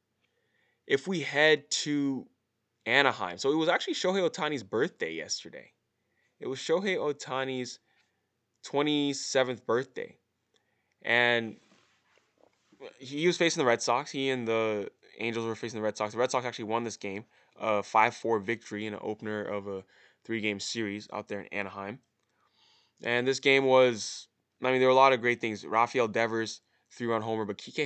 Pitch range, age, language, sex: 110-140 Hz, 20-39, English, male